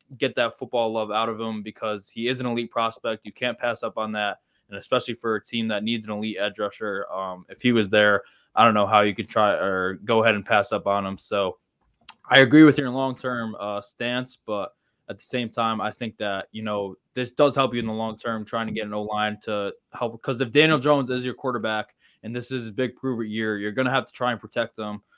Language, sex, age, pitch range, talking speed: English, male, 20-39, 105-120 Hz, 250 wpm